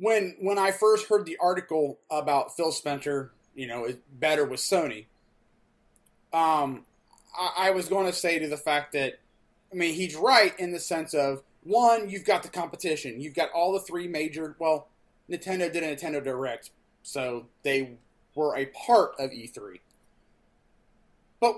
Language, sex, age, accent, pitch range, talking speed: English, male, 30-49, American, 155-200 Hz, 165 wpm